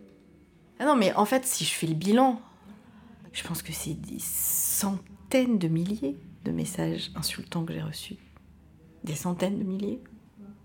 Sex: female